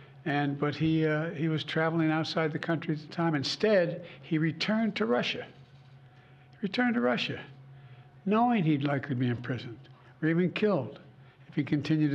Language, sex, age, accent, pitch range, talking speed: English, male, 60-79, American, 135-165 Hz, 160 wpm